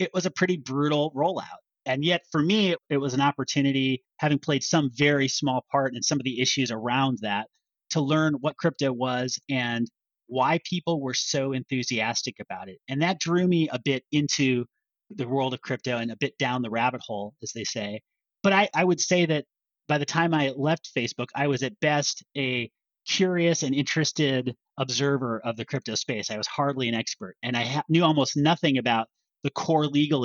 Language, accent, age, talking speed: English, American, 30-49, 200 wpm